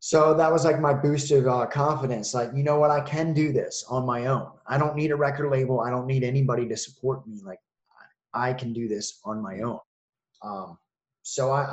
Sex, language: male, English